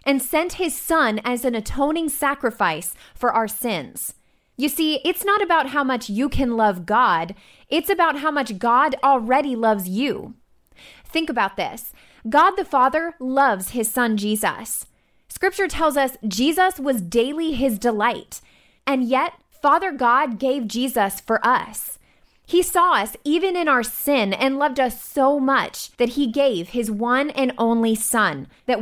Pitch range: 235-300 Hz